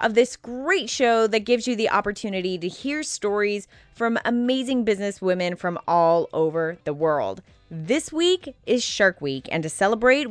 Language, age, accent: English, 20-39, American